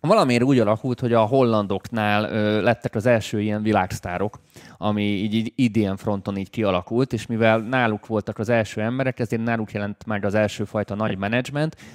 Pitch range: 100-120 Hz